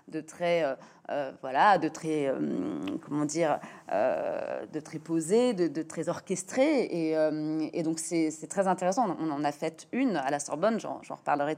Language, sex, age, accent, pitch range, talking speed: French, female, 30-49, French, 155-200 Hz, 190 wpm